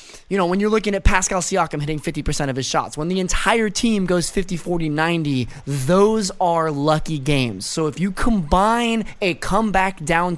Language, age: English, 20-39